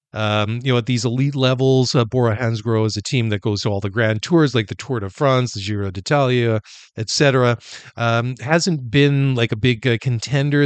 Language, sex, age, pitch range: English, male, 40-59, 110-125 Hz